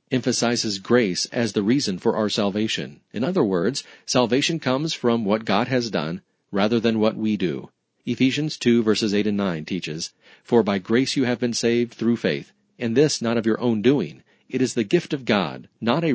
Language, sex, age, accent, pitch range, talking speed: English, male, 40-59, American, 105-130 Hz, 200 wpm